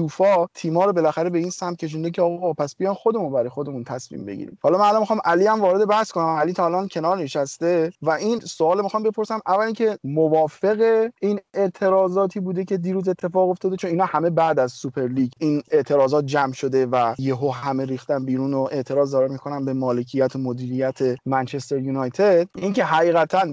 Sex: male